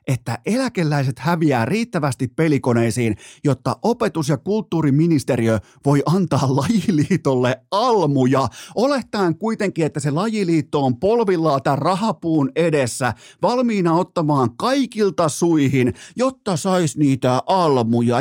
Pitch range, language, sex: 130-185 Hz, Finnish, male